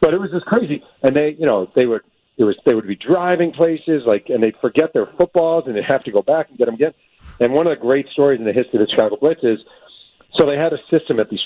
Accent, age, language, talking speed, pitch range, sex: American, 50-69, English, 290 wpm, 110-155 Hz, male